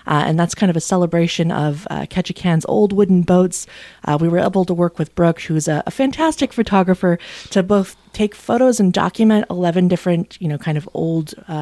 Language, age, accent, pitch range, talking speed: English, 20-39, American, 170-210 Hz, 200 wpm